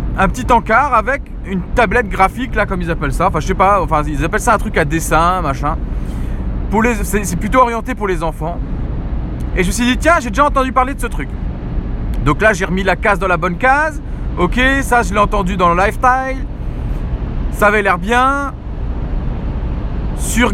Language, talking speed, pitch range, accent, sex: French, 205 wpm, 175-250 Hz, French, male